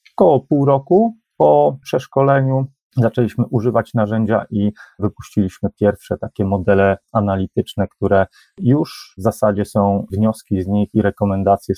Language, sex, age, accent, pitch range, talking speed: Polish, male, 30-49, native, 100-115 Hz, 120 wpm